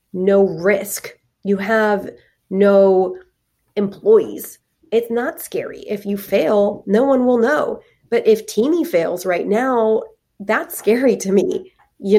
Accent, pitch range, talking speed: American, 180-220 Hz, 135 wpm